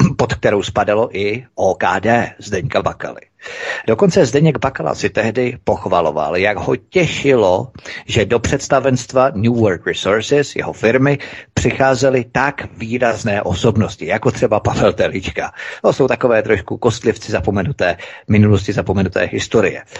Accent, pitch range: native, 105-130 Hz